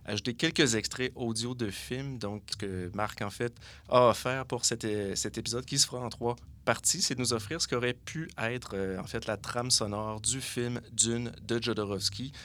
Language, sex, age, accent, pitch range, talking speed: French, male, 30-49, Canadian, 100-120 Hz, 210 wpm